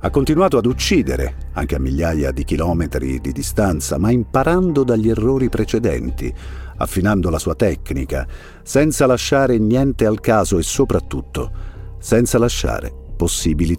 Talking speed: 130 wpm